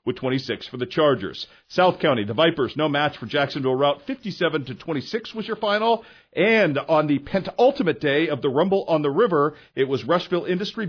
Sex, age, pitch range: male, 50-69, 140-190 Hz